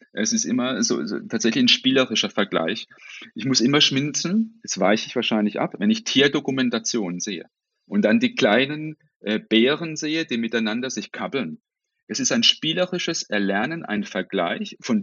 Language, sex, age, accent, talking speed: German, male, 40-59, German, 165 wpm